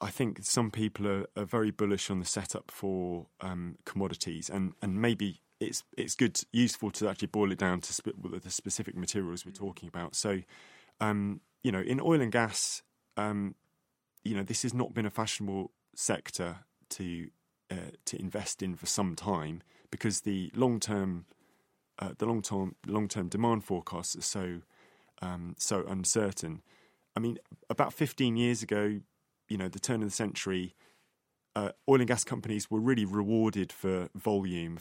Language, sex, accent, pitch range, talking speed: English, male, British, 90-110 Hz, 170 wpm